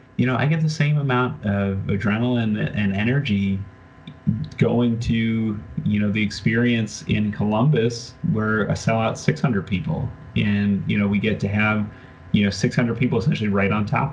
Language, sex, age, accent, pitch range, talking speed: English, male, 30-49, American, 100-120 Hz, 170 wpm